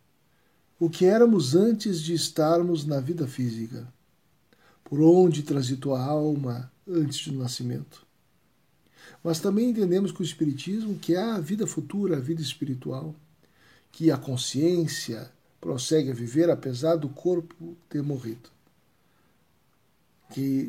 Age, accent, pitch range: 60-79, Brazilian, 135-170 Hz